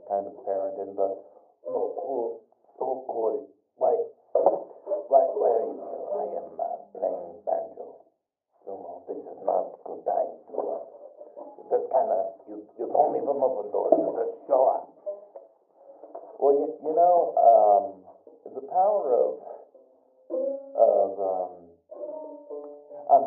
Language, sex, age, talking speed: English, male, 50-69, 135 wpm